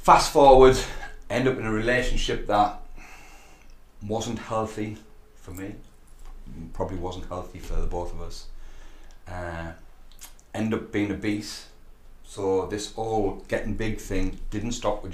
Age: 30-49